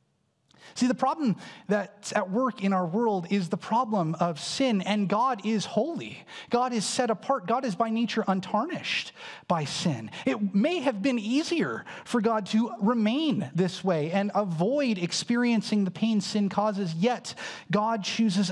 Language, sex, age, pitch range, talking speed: English, male, 30-49, 170-220 Hz, 160 wpm